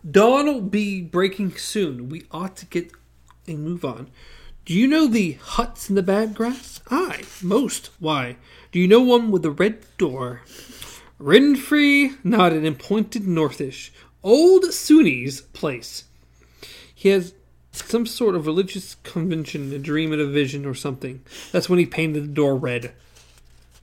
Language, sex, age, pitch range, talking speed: English, male, 40-59, 140-200 Hz, 155 wpm